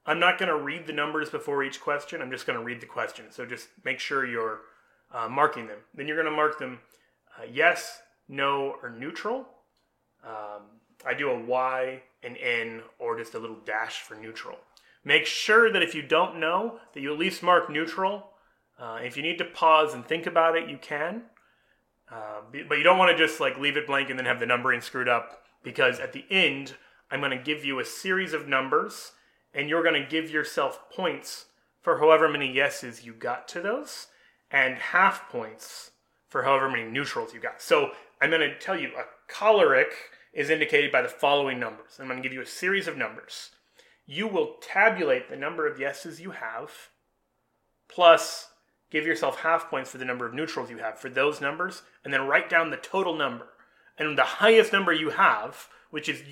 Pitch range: 135-180 Hz